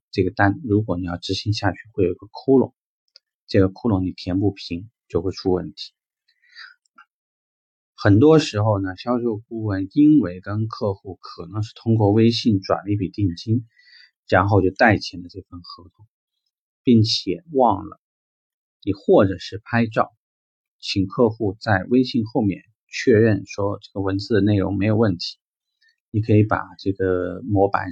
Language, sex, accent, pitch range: Chinese, male, native, 95-115 Hz